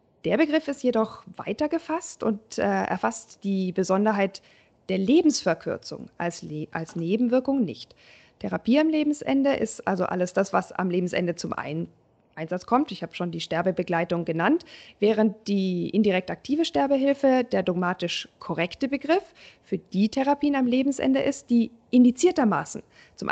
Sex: female